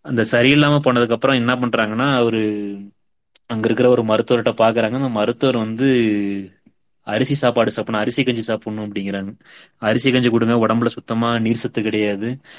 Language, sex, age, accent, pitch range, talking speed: Tamil, male, 20-39, native, 105-120 Hz, 140 wpm